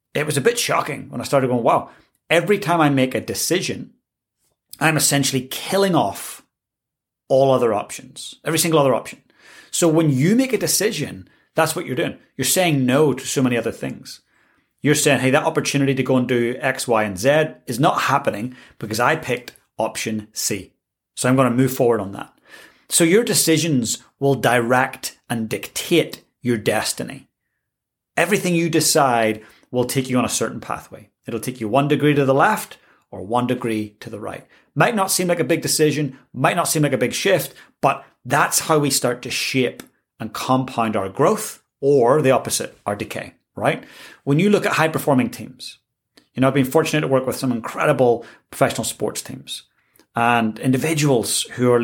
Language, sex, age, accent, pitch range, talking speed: English, male, 30-49, British, 125-155 Hz, 185 wpm